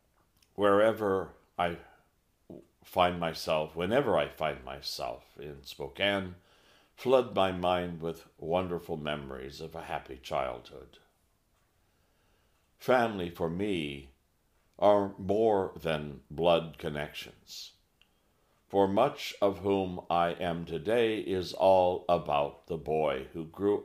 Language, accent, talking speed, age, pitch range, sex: English, American, 105 wpm, 60-79, 80-100 Hz, male